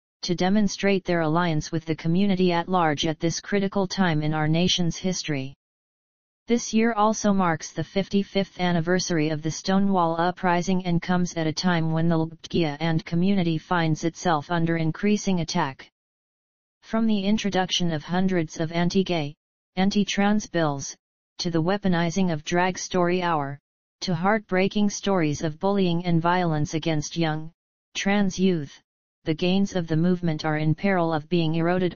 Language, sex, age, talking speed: English, female, 40-59, 150 wpm